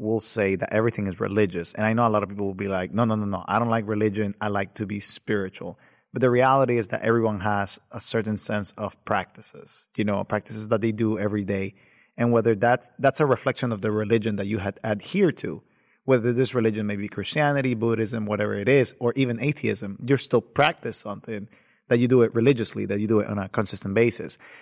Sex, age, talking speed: male, 30-49, 225 wpm